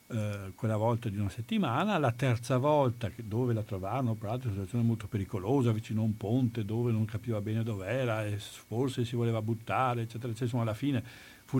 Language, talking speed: Italian, 185 wpm